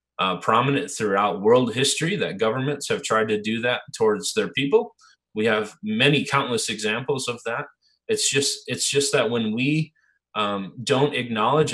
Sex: male